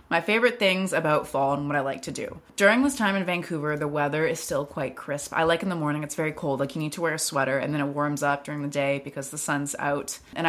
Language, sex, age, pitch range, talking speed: English, female, 20-39, 140-165 Hz, 285 wpm